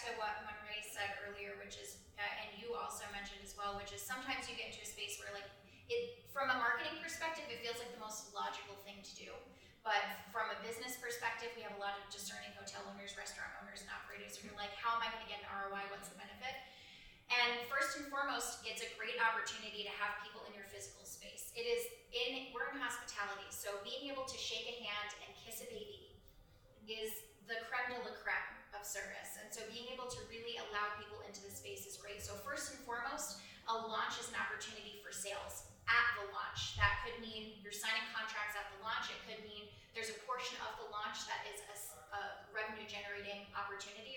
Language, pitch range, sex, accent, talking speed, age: English, 200-235 Hz, female, American, 215 wpm, 20-39